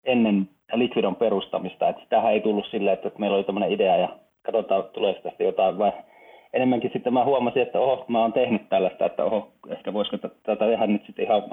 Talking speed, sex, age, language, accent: 200 wpm, male, 30-49, Finnish, native